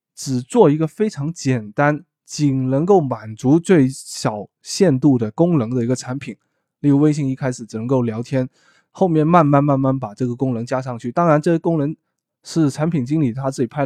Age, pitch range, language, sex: 20-39, 125-155 Hz, Chinese, male